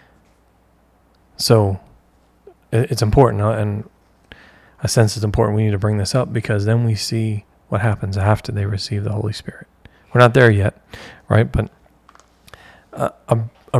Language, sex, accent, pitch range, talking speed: English, male, American, 100-115 Hz, 150 wpm